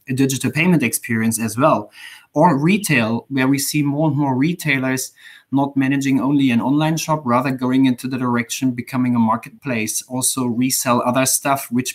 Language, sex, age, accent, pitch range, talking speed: English, male, 20-39, German, 125-145 Hz, 170 wpm